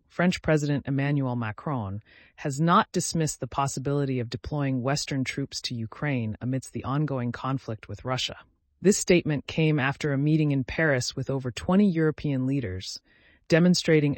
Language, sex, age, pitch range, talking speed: English, female, 30-49, 120-160 Hz, 150 wpm